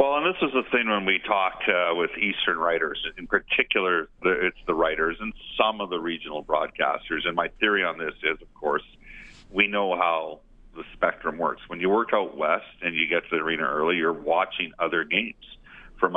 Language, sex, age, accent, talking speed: English, male, 40-59, American, 205 wpm